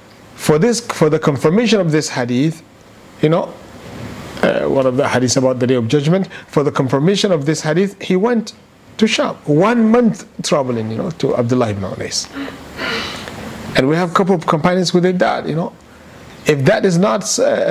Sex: male